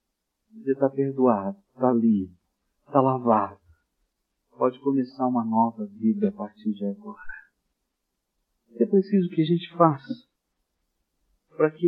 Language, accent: Portuguese, Brazilian